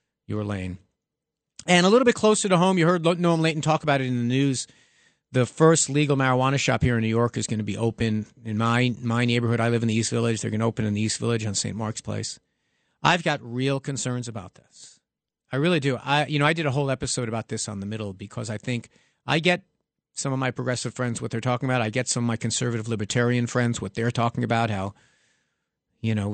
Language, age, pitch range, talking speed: English, 50-69, 115-150 Hz, 240 wpm